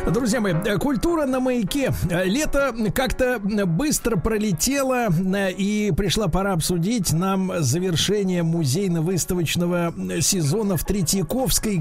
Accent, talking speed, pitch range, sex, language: native, 95 wpm, 155-205 Hz, male, Russian